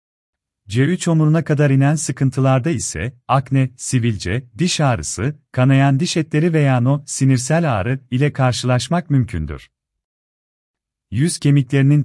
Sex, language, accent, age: male, Turkish, native, 40-59